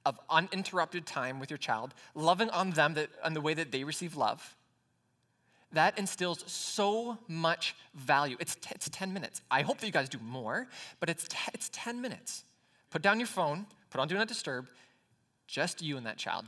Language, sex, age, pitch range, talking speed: English, male, 20-39, 140-195 Hz, 195 wpm